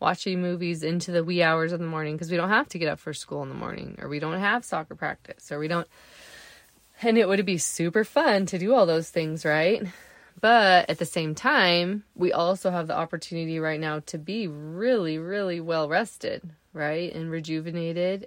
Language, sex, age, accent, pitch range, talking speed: English, female, 20-39, American, 155-180 Hz, 205 wpm